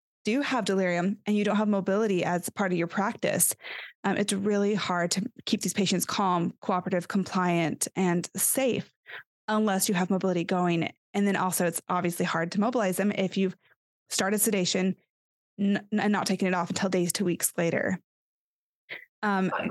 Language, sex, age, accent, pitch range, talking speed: English, female, 20-39, American, 185-215 Hz, 170 wpm